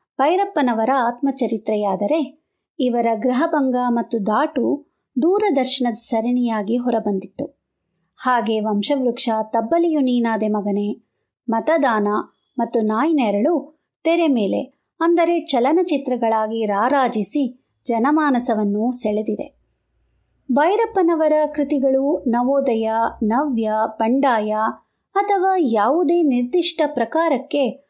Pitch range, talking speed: 230-305 Hz, 70 wpm